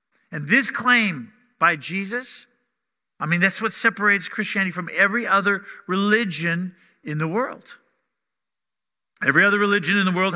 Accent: American